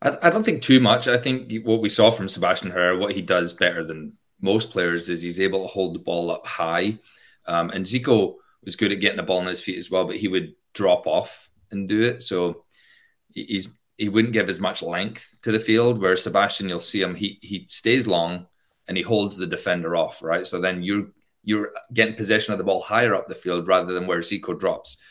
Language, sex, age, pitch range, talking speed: English, male, 30-49, 90-110 Hz, 230 wpm